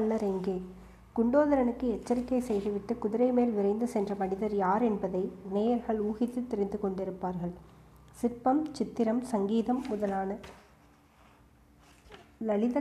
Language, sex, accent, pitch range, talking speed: Tamil, female, native, 200-235 Hz, 90 wpm